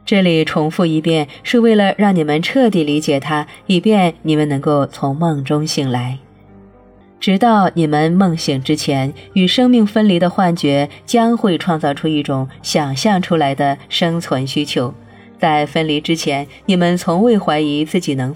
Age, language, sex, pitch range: 30-49, Chinese, female, 145-185 Hz